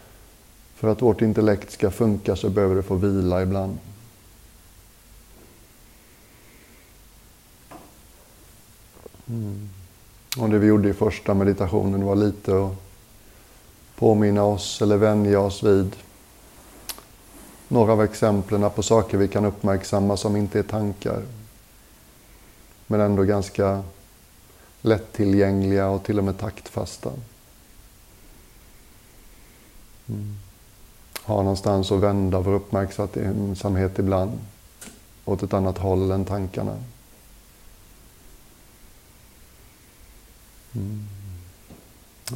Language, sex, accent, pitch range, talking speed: Swedish, male, native, 95-105 Hz, 95 wpm